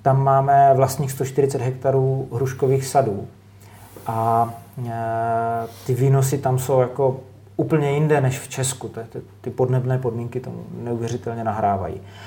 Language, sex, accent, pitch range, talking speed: Czech, male, native, 115-135 Hz, 115 wpm